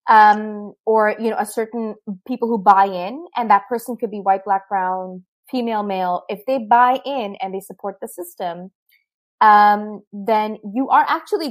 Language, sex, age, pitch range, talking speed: English, female, 20-39, 205-250 Hz, 175 wpm